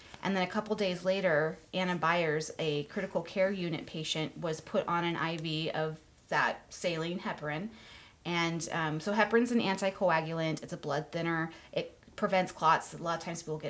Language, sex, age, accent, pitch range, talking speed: English, female, 30-49, American, 160-205 Hz, 180 wpm